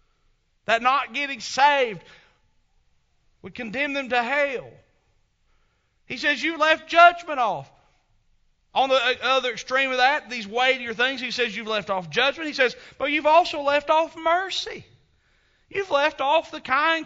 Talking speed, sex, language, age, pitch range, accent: 150 wpm, male, English, 40-59, 195-305 Hz, American